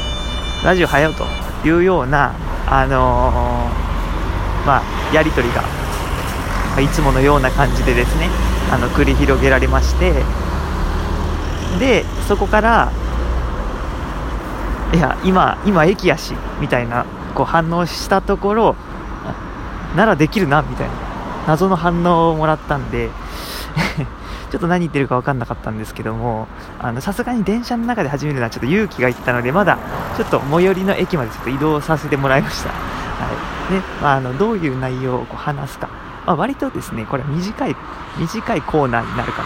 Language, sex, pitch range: Japanese, male, 115-175 Hz